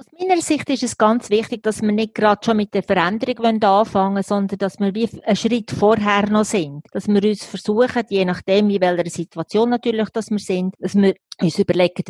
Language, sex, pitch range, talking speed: German, female, 195-230 Hz, 215 wpm